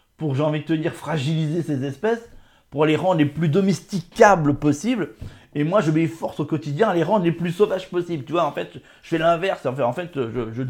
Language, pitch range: French, 120-165 Hz